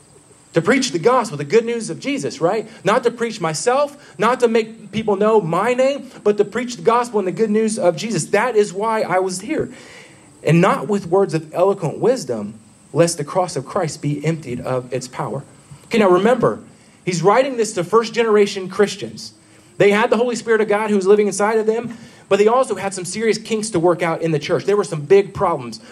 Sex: male